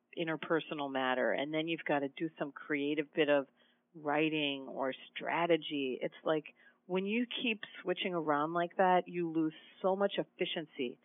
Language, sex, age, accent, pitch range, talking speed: English, female, 40-59, American, 155-195 Hz, 160 wpm